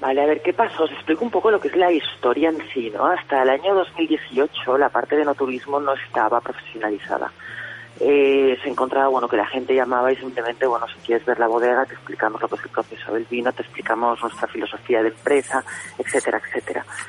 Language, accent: Spanish, Spanish